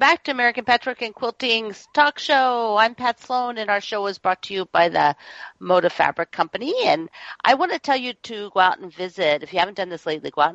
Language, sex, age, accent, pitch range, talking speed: English, female, 50-69, American, 170-240 Hz, 240 wpm